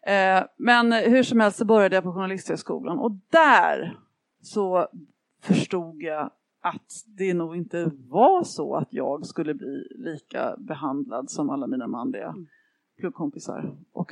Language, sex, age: Swedish, female, 30-49